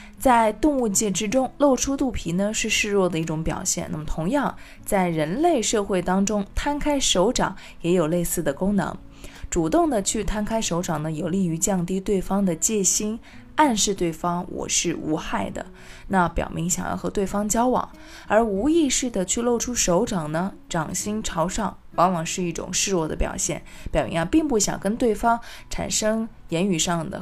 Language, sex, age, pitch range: Chinese, female, 20-39, 175-230 Hz